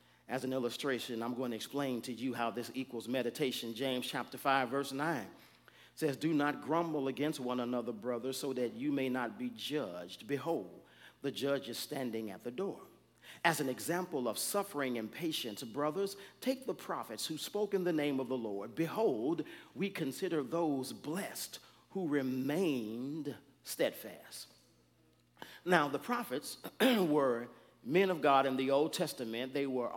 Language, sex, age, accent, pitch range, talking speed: English, male, 50-69, American, 130-175 Hz, 160 wpm